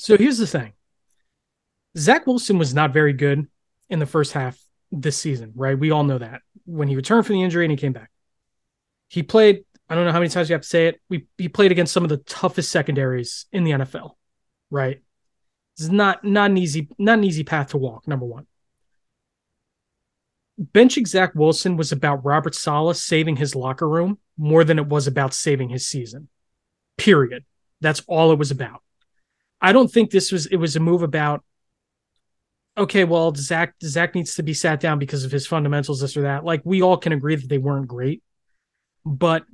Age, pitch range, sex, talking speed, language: 20-39, 140-175 Hz, male, 200 wpm, English